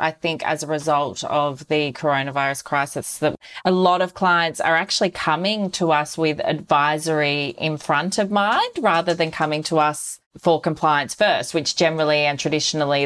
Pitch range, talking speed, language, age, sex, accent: 150-175 Hz, 170 wpm, English, 30-49, female, Australian